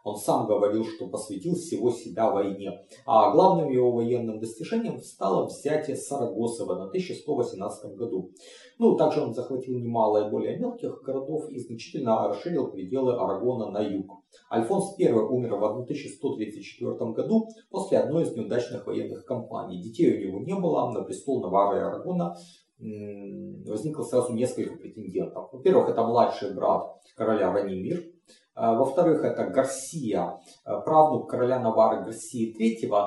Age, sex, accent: 30-49, male, native